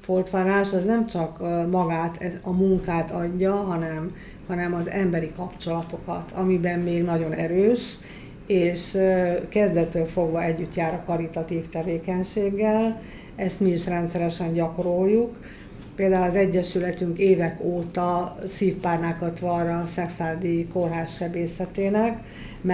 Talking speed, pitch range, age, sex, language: 105 wpm, 170-185 Hz, 50-69, female, Hungarian